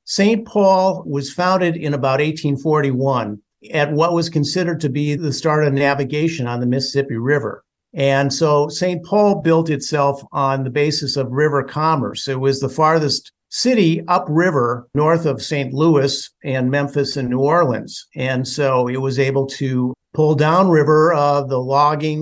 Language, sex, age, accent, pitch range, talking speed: English, male, 50-69, American, 140-170 Hz, 160 wpm